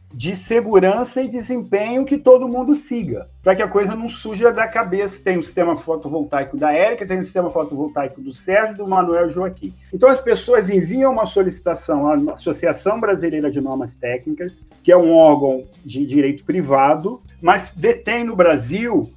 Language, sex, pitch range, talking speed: Portuguese, male, 170-235 Hz, 170 wpm